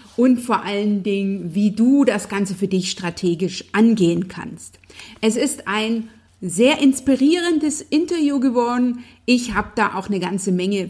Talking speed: 150 wpm